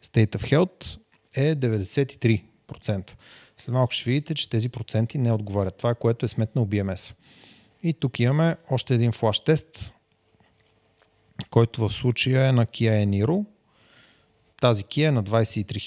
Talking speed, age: 145 wpm, 30-49